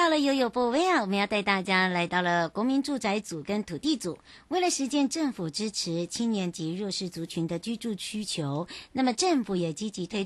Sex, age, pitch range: male, 60-79, 175-240 Hz